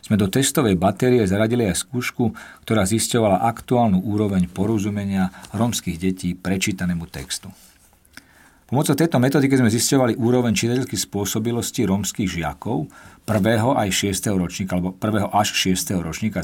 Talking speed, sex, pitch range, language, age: 125 wpm, male, 95-125 Hz, Slovak, 50-69